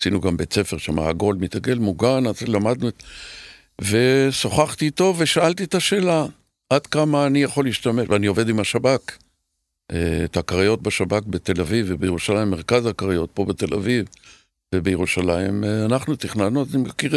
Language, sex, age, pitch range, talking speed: Hebrew, male, 60-79, 100-125 Hz, 145 wpm